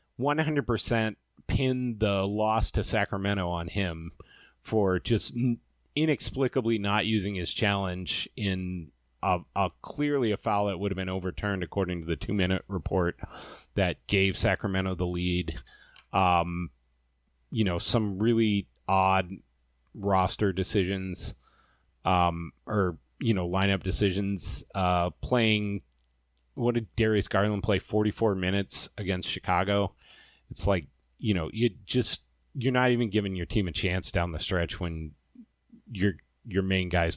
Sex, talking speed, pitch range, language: male, 135 wpm, 85-110 Hz, English